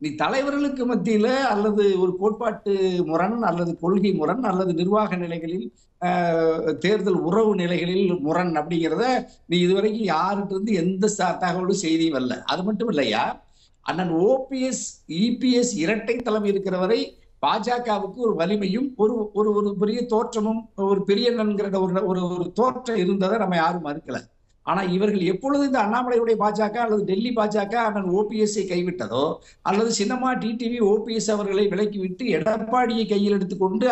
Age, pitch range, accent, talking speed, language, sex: 60-79, 185-230 Hz, native, 130 wpm, Tamil, male